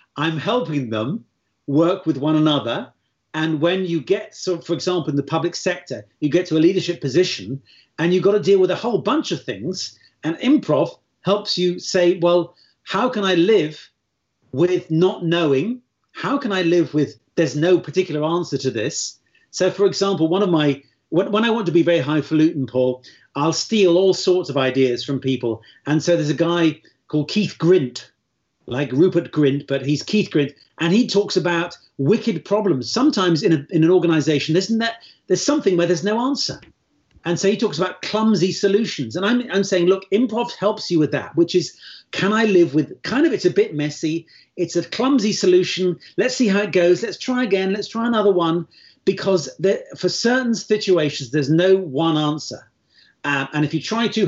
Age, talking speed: 40-59, 195 wpm